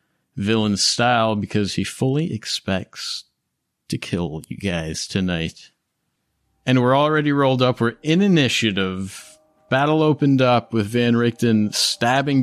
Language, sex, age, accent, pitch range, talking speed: English, male, 30-49, American, 95-115 Hz, 125 wpm